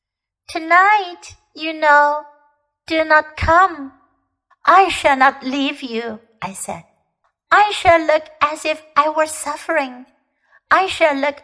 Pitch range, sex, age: 250-325 Hz, female, 60-79